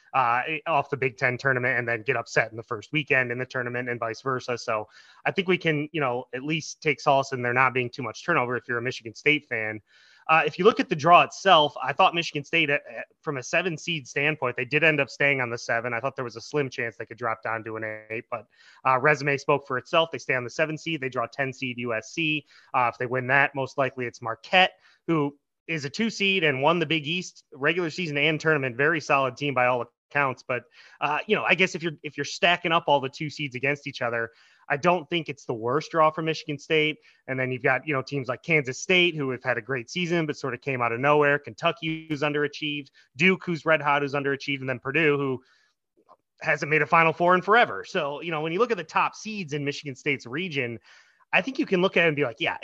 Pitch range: 125-160 Hz